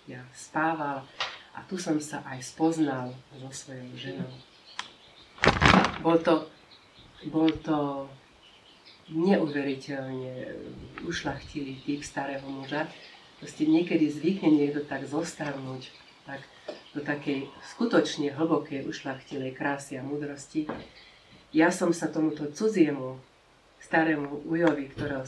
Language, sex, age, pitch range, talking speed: Slovak, female, 40-59, 135-160 Hz, 100 wpm